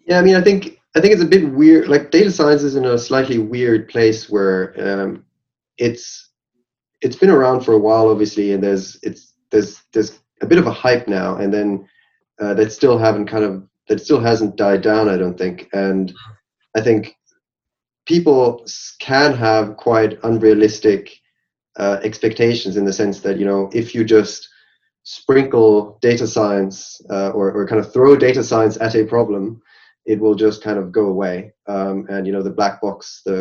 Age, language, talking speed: 20-39, English, 190 wpm